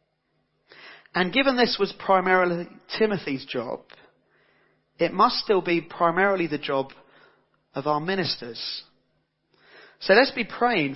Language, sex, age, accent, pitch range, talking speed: English, male, 40-59, British, 155-210 Hz, 115 wpm